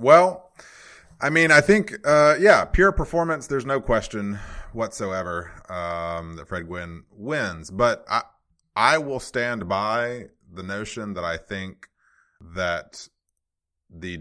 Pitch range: 85-110 Hz